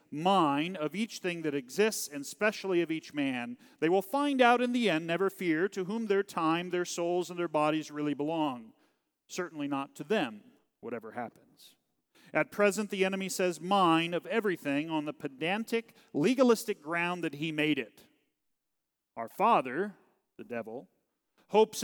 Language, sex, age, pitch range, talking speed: English, male, 40-59, 150-205 Hz, 160 wpm